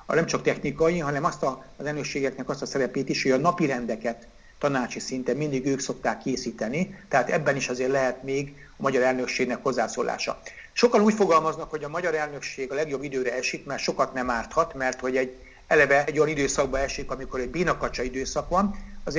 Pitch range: 130-160 Hz